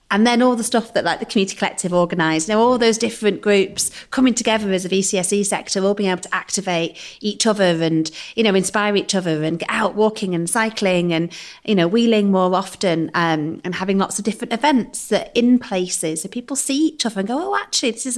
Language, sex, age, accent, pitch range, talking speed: English, female, 30-49, British, 190-250 Hz, 230 wpm